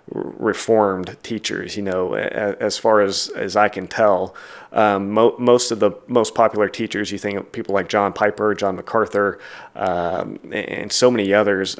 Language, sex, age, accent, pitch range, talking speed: English, male, 30-49, American, 95-110 Hz, 170 wpm